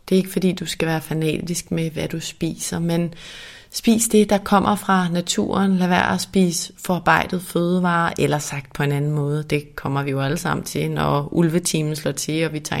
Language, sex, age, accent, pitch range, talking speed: Danish, female, 30-49, native, 155-185 Hz, 210 wpm